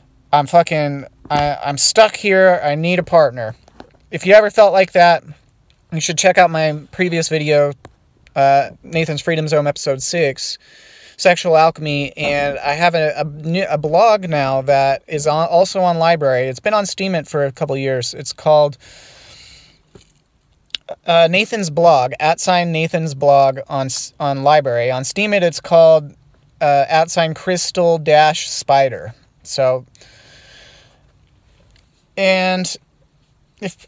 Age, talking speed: 30-49, 135 wpm